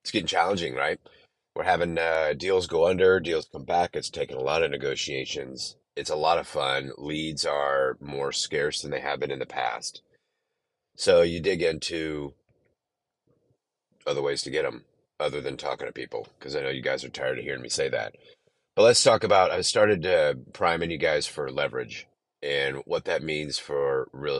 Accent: American